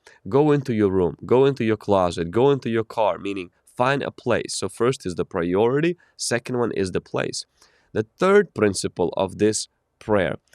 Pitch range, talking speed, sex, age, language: 100-140 Hz, 180 wpm, male, 20-39, English